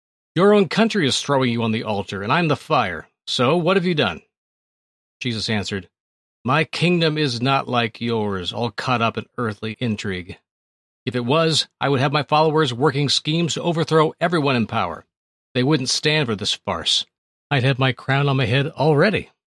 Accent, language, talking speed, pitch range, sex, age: American, English, 185 wpm, 105-155 Hz, male, 40-59